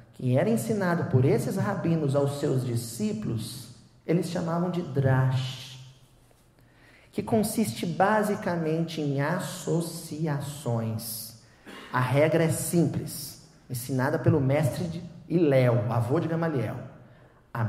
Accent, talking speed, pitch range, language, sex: Brazilian, 105 wpm, 125-180 Hz, Portuguese, male